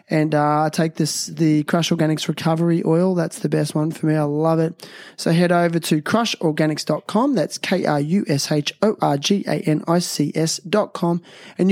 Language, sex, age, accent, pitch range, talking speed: English, male, 20-39, Australian, 165-200 Hz, 140 wpm